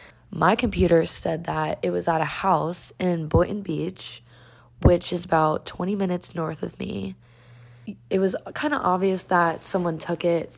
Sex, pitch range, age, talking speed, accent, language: female, 150-180 Hz, 20-39, 165 wpm, American, English